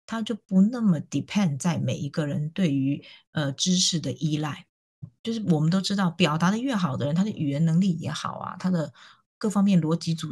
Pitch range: 155-195 Hz